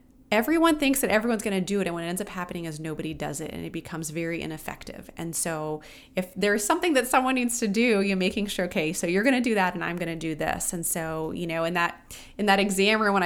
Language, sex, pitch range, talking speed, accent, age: English, female, 160-195 Hz, 260 wpm, American, 20-39